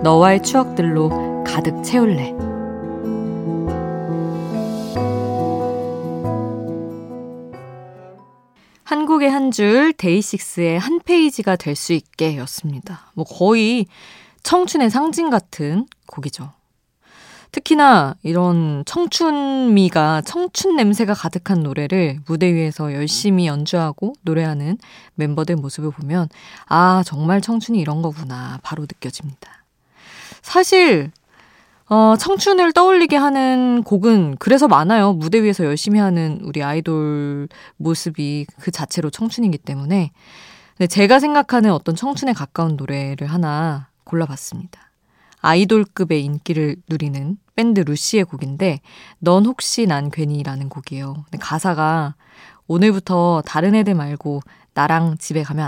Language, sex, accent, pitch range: Korean, female, native, 145-215 Hz